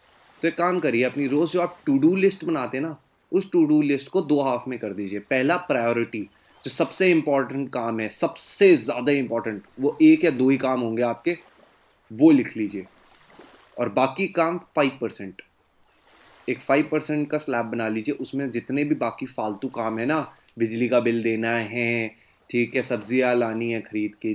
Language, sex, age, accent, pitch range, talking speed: Hindi, male, 20-39, native, 115-175 Hz, 185 wpm